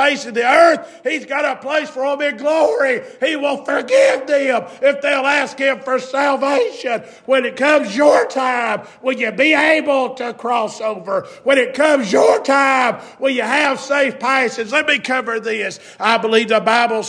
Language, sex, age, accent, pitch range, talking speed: English, male, 50-69, American, 245-290 Hz, 185 wpm